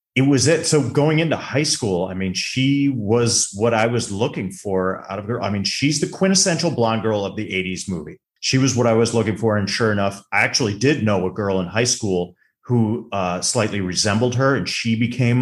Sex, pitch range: male, 95-135 Hz